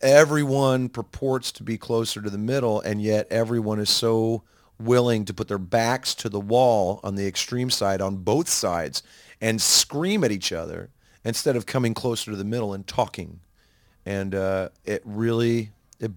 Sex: male